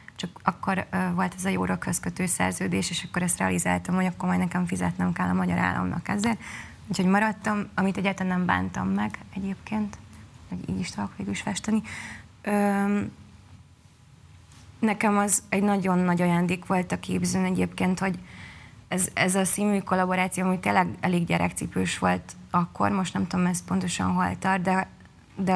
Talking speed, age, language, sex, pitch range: 160 wpm, 20-39, Hungarian, female, 140-190 Hz